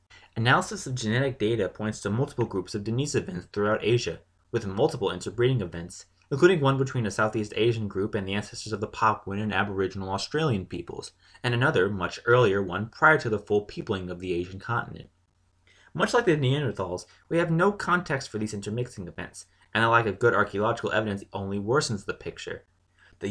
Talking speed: 185 wpm